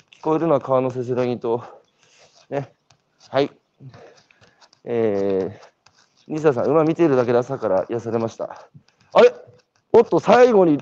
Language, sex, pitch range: Japanese, male, 130-200 Hz